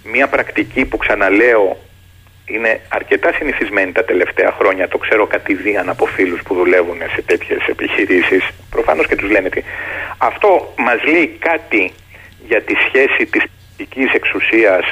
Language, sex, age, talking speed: Greek, male, 40-59, 140 wpm